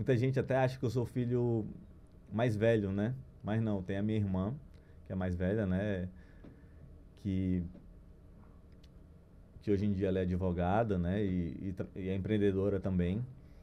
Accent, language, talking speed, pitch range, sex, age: Brazilian, Portuguese, 165 wpm, 90-130 Hz, male, 20-39